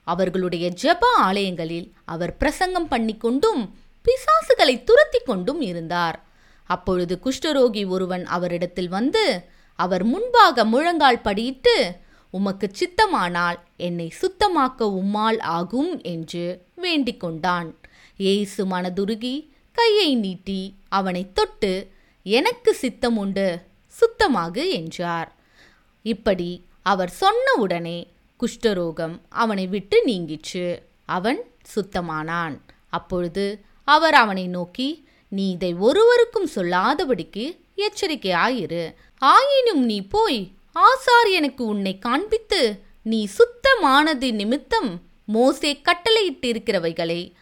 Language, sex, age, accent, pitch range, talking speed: Tamil, female, 20-39, native, 180-300 Hz, 85 wpm